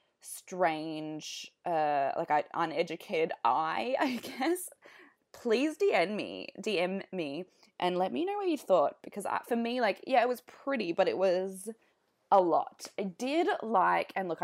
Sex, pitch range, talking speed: female, 180-275 Hz, 160 wpm